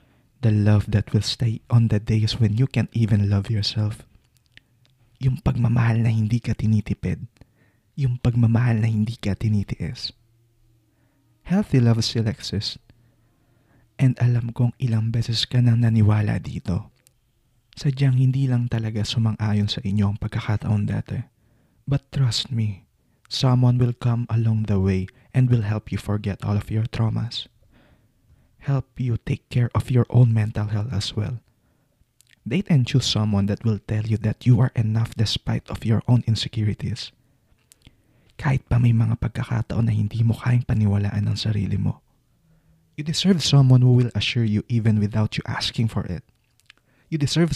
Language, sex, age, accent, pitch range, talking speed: English, male, 20-39, Filipino, 110-125 Hz, 155 wpm